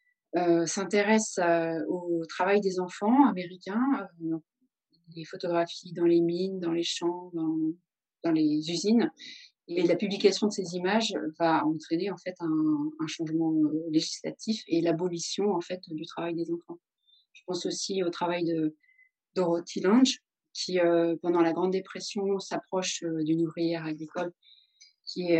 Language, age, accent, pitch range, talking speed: French, 30-49, French, 170-215 Hz, 150 wpm